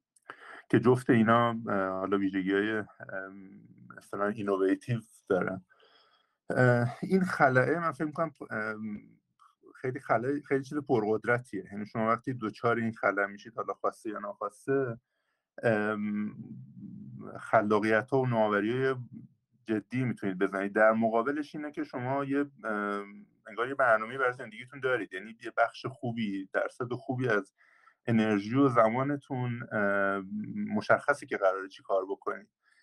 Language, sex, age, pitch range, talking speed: Persian, male, 50-69, 110-135 Hz, 110 wpm